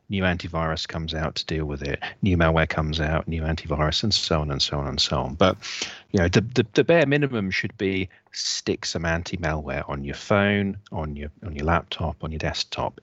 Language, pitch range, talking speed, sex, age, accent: English, 80-100 Hz, 215 wpm, male, 40-59, British